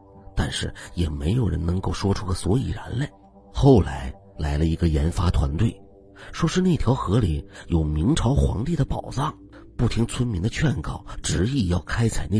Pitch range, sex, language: 90-115 Hz, male, Chinese